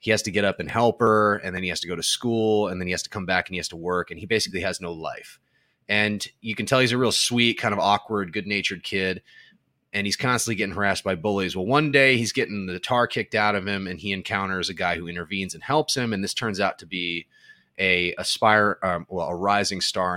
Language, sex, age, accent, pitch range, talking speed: English, male, 30-49, American, 90-110 Hz, 260 wpm